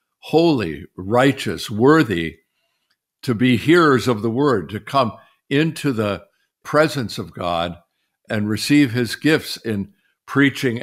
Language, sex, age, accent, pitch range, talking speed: English, male, 60-79, American, 100-135 Hz, 120 wpm